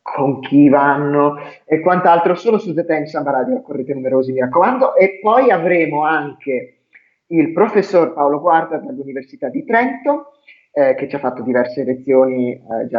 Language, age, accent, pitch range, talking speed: Italian, 30-49, native, 135-175 Hz, 160 wpm